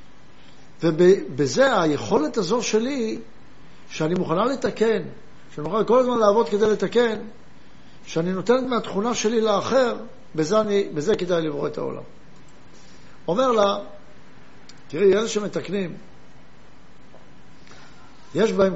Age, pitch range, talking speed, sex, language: 60-79, 180-225 Hz, 105 wpm, male, Hebrew